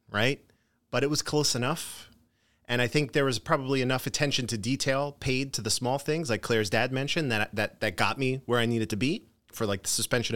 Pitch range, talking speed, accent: 105-135 Hz, 225 wpm, American